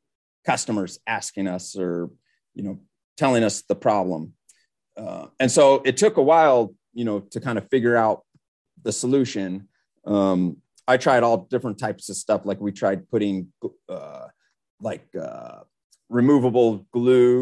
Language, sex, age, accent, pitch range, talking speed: English, male, 30-49, American, 100-130 Hz, 150 wpm